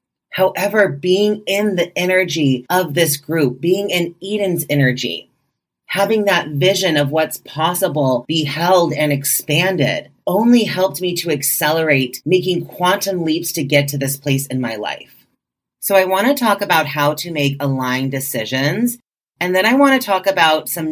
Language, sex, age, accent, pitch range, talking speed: English, female, 30-49, American, 135-185 Hz, 165 wpm